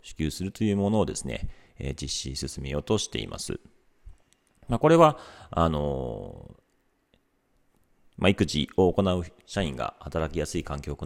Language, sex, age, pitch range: Japanese, male, 40-59, 75-110 Hz